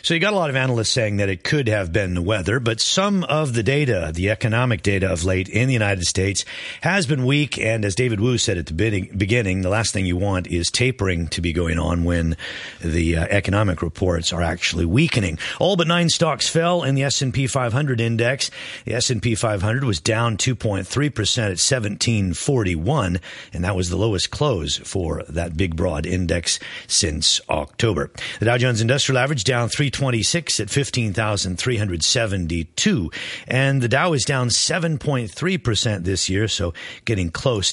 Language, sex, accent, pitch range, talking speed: English, male, American, 90-130 Hz, 175 wpm